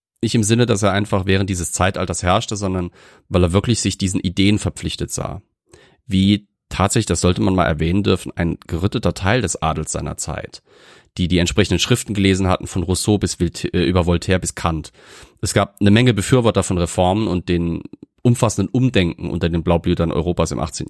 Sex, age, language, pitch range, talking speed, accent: male, 30-49, German, 85-105 Hz, 185 wpm, German